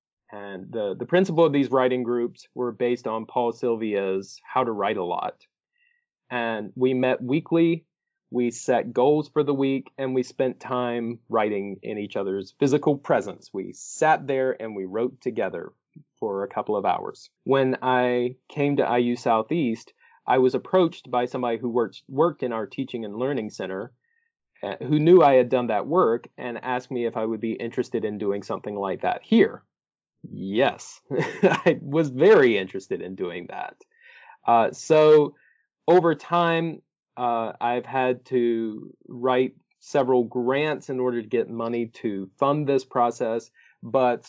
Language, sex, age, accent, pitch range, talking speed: English, male, 30-49, American, 115-150 Hz, 165 wpm